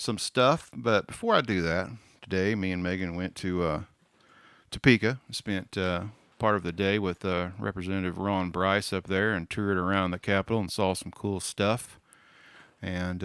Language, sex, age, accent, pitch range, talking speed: English, male, 50-69, American, 90-115 Hz, 175 wpm